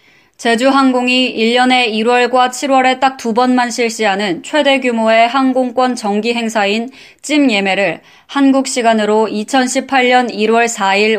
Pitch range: 210-255 Hz